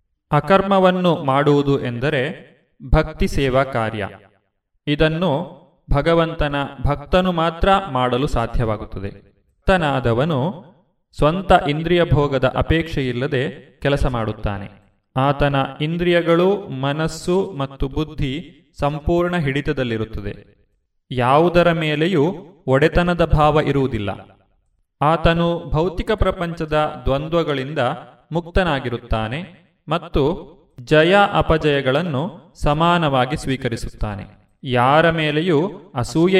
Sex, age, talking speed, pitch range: male, 30-49, 75 wpm, 125-170 Hz